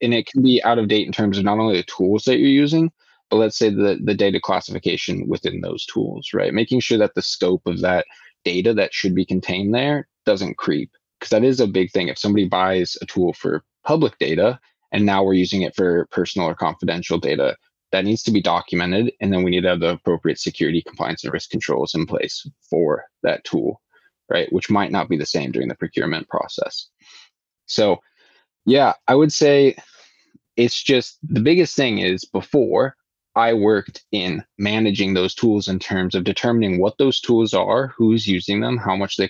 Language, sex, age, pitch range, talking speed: English, male, 20-39, 95-120 Hz, 205 wpm